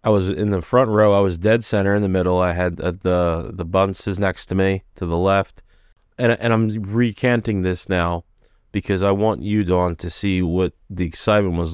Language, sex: English, male